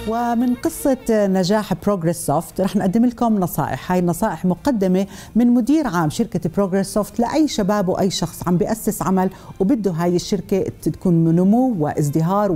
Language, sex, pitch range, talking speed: Arabic, female, 170-225 Hz, 150 wpm